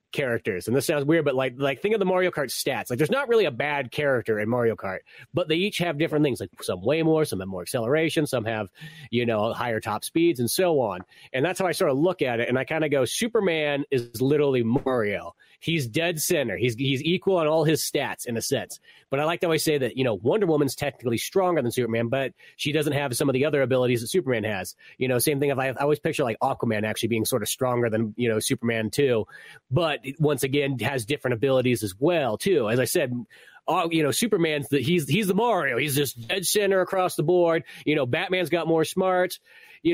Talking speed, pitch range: 245 wpm, 120-160 Hz